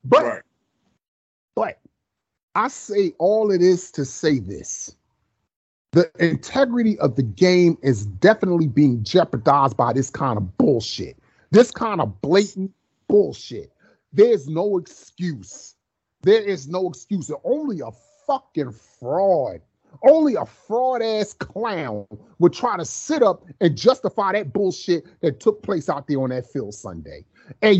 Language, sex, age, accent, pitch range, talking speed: English, male, 30-49, American, 145-225 Hz, 140 wpm